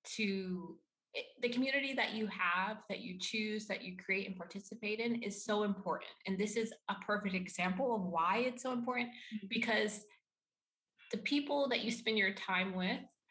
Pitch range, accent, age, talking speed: 185-235 Hz, American, 20-39, 170 wpm